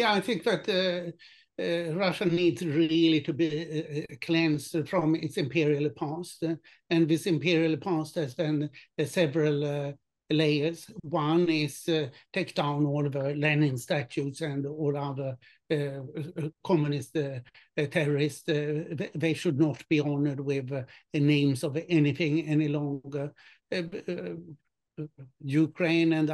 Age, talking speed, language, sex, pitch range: 60-79, 135 wpm, English, male, 145-165 Hz